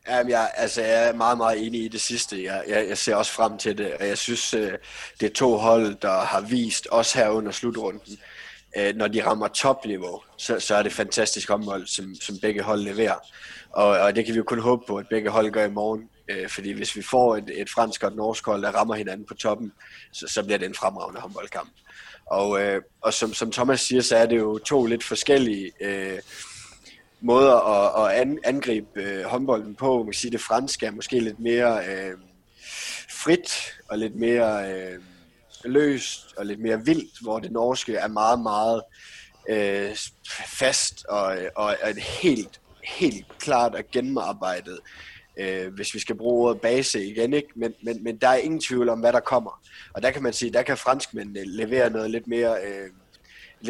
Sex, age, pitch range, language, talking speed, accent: male, 20-39, 100-120 Hz, Danish, 180 wpm, native